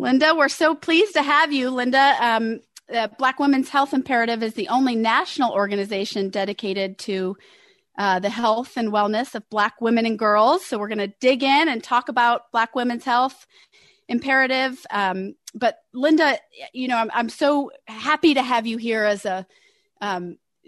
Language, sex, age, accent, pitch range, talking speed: English, female, 30-49, American, 205-255 Hz, 175 wpm